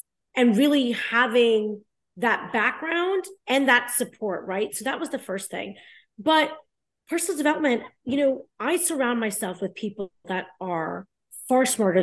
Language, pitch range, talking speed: English, 195-260 Hz, 145 wpm